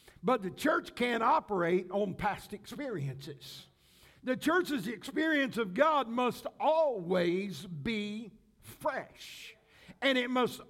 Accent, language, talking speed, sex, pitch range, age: American, English, 110 wpm, male, 225-275 Hz, 60-79